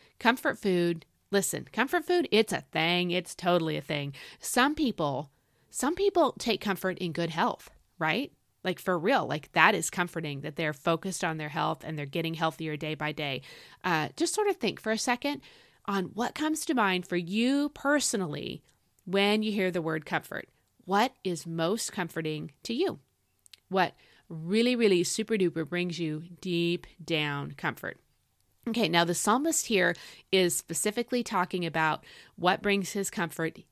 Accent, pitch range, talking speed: American, 165-225 Hz, 165 wpm